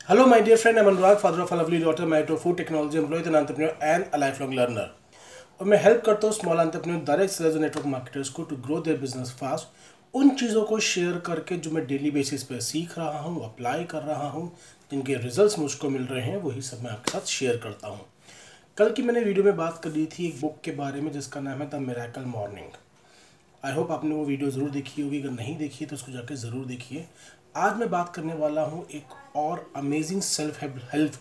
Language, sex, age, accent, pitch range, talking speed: Hindi, male, 30-49, native, 135-170 Hz, 180 wpm